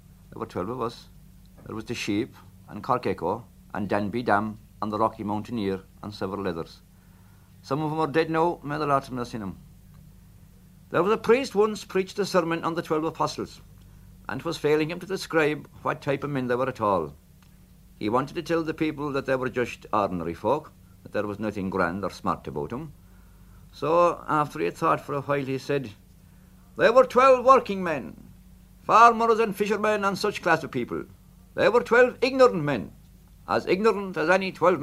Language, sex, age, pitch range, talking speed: English, male, 60-79, 95-160 Hz, 200 wpm